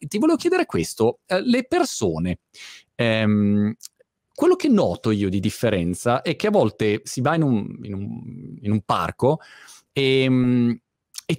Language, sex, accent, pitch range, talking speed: Italian, male, native, 105-140 Hz, 150 wpm